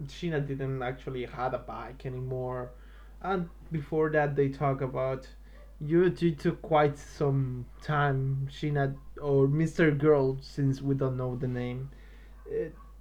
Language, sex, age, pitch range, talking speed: English, male, 20-39, 135-170 Hz, 135 wpm